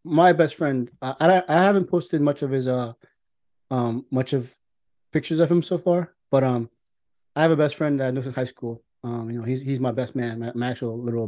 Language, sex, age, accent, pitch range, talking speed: English, male, 30-49, American, 120-145 Hz, 235 wpm